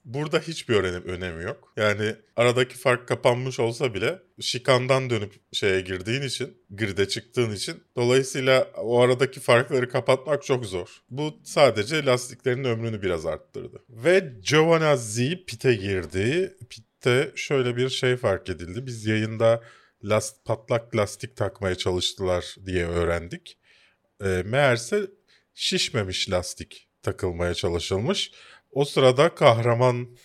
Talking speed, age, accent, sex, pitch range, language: 120 wpm, 40-59, native, male, 95-140 Hz, Turkish